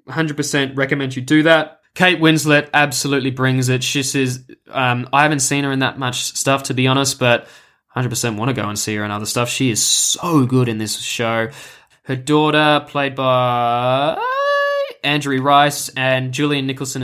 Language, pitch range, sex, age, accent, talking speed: English, 130-155 Hz, male, 20-39, Australian, 175 wpm